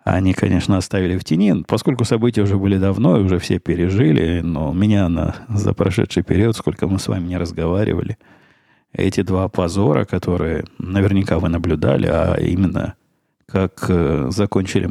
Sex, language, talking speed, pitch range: male, Russian, 140 wpm, 90-105 Hz